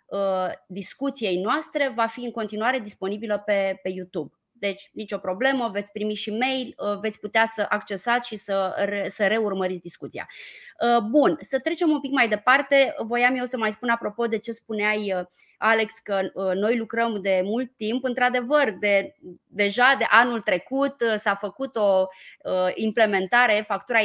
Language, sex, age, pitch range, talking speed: Romanian, female, 20-39, 200-255 Hz, 150 wpm